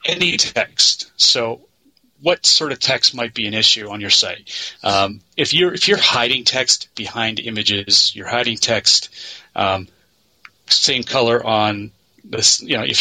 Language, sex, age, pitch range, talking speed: English, male, 30-49, 100-130 Hz, 155 wpm